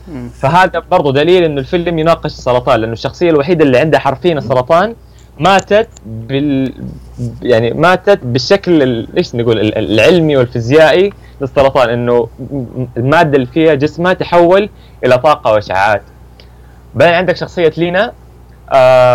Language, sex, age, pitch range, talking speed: Arabic, male, 20-39, 110-165 Hz, 120 wpm